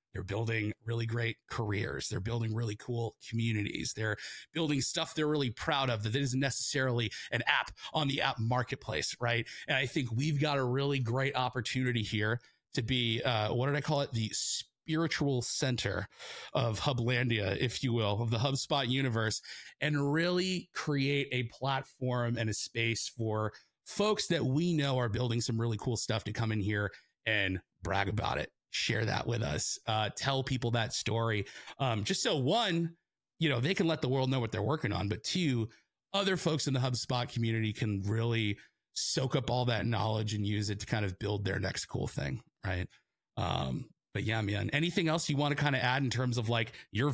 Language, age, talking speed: English, 30-49, 195 wpm